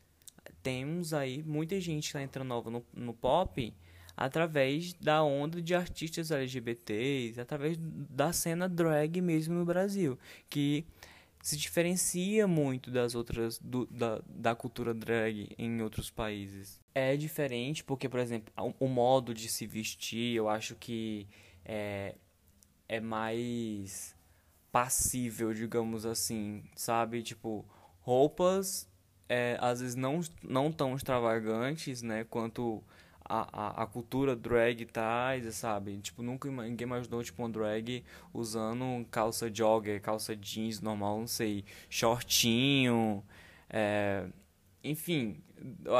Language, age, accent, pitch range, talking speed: Portuguese, 20-39, Brazilian, 110-140 Hz, 125 wpm